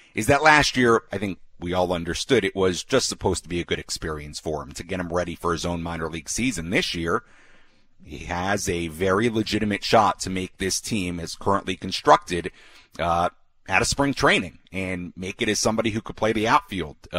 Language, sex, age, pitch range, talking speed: English, male, 40-59, 90-120 Hz, 210 wpm